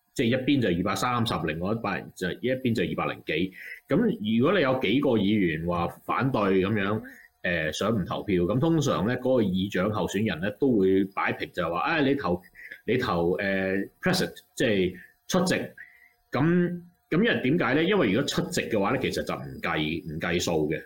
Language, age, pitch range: Chinese, 30-49, 95-130 Hz